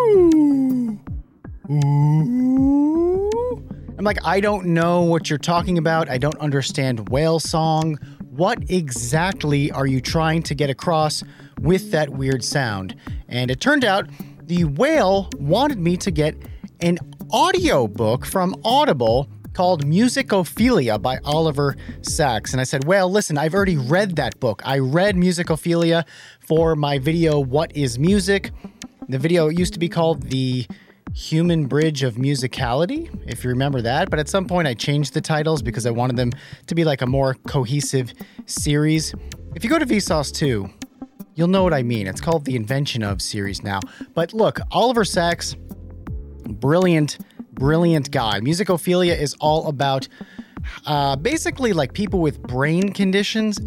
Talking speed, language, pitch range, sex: 150 wpm, English, 135-195 Hz, male